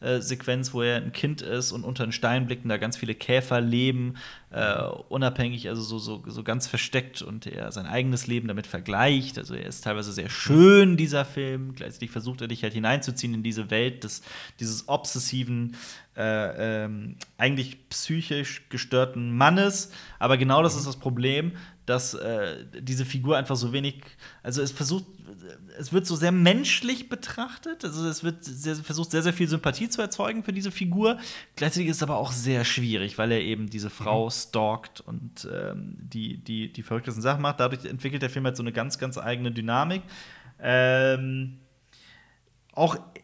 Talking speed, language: 175 wpm, German